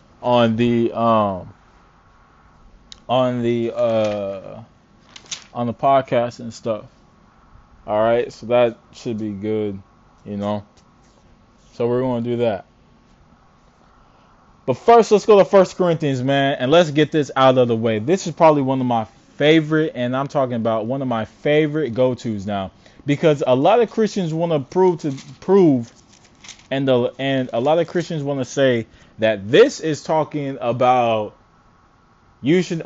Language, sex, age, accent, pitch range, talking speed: English, male, 20-39, American, 115-155 Hz, 155 wpm